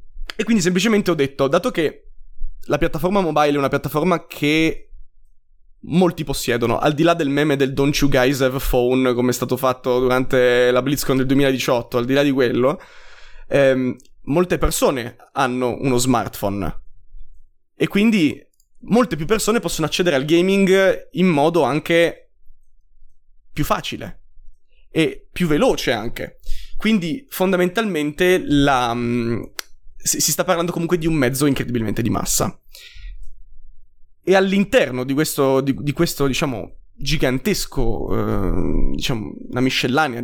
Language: Italian